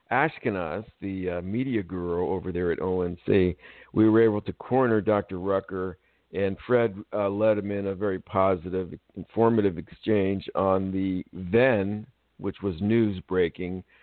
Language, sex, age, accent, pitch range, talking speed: English, male, 50-69, American, 95-110 Hz, 140 wpm